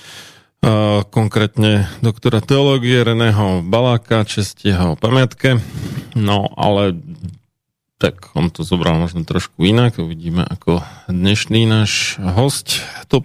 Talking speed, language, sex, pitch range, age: 100 wpm, Slovak, male, 95-115 Hz, 40-59